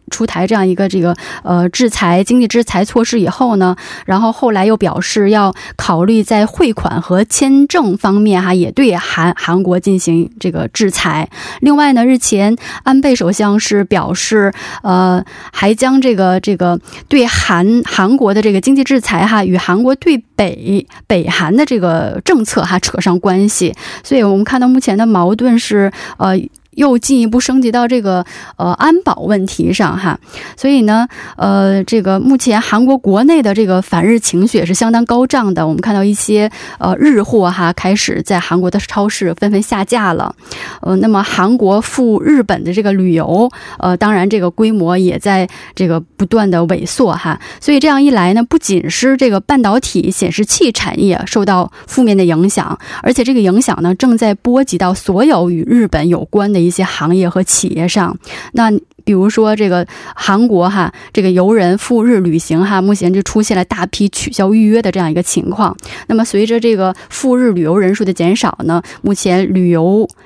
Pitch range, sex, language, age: 185-235 Hz, female, Korean, 20-39